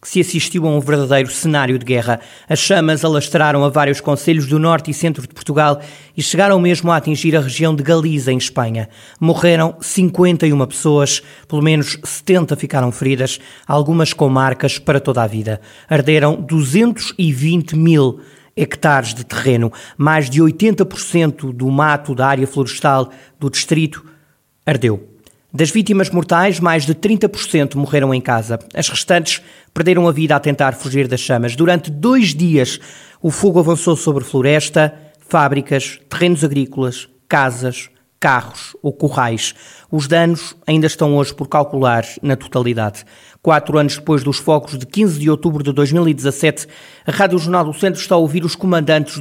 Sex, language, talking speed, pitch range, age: male, Portuguese, 155 wpm, 135-170 Hz, 20-39